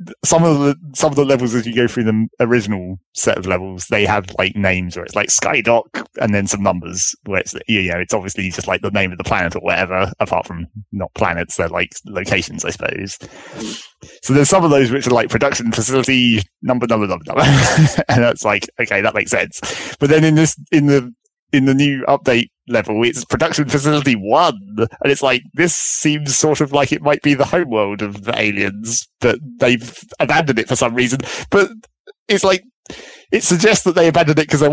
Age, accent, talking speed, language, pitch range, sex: 30-49, British, 215 wpm, English, 115-155 Hz, male